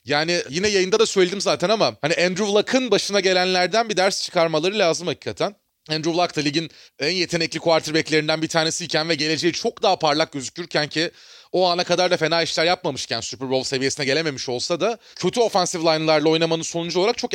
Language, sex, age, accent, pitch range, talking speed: Turkish, male, 30-49, native, 160-215 Hz, 185 wpm